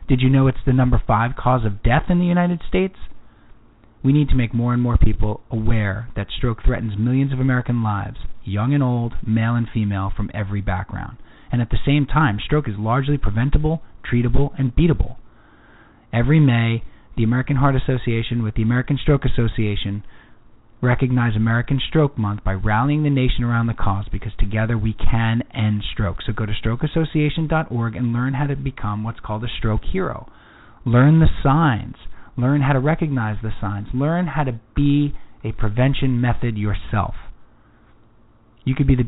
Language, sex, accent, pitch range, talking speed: English, male, American, 110-130 Hz, 175 wpm